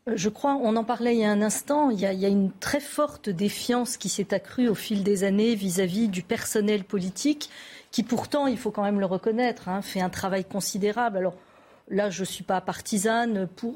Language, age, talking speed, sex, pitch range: French, 40-59, 225 wpm, female, 195-245 Hz